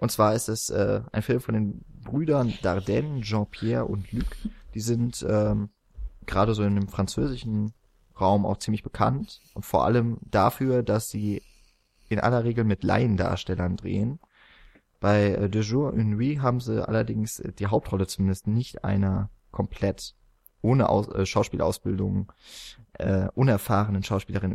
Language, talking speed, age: German, 145 wpm, 20-39